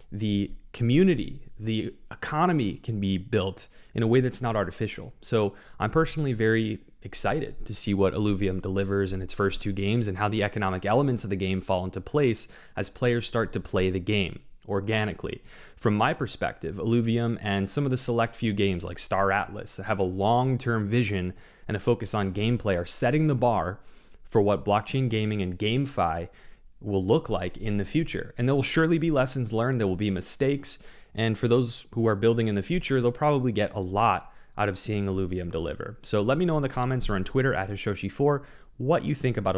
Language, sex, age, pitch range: English, male, 30-49, 100-125 Hz